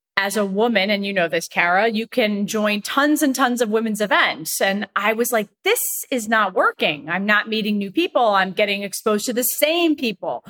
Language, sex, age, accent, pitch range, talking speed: English, female, 30-49, American, 190-220 Hz, 210 wpm